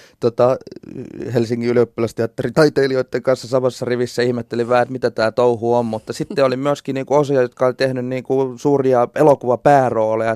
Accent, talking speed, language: native, 150 wpm, Finnish